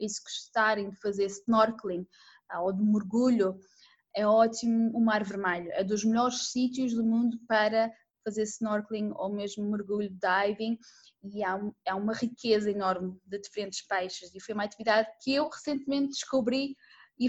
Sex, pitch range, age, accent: female, 215-270 Hz, 20-39, Brazilian